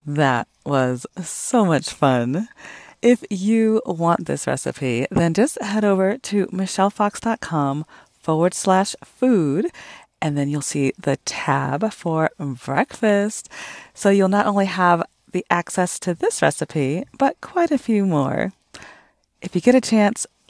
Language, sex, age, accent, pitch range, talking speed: English, female, 40-59, American, 160-225 Hz, 140 wpm